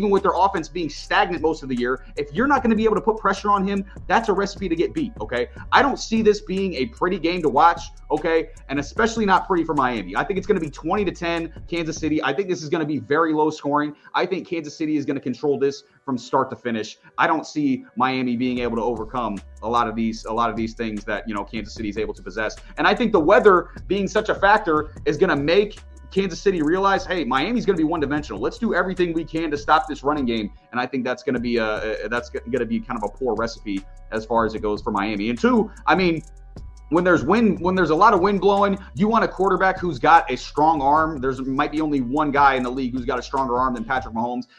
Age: 30-49